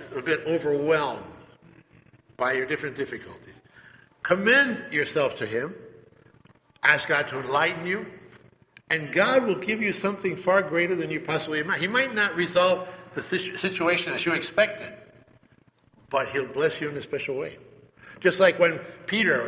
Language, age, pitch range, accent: English, 60-79, 150-200 Hz, American